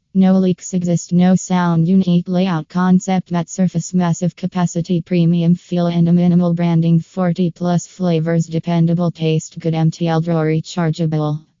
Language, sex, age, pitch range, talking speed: English, female, 20-39, 165-180 Hz, 140 wpm